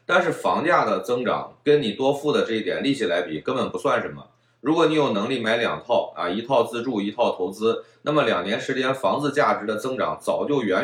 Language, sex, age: Chinese, male, 20-39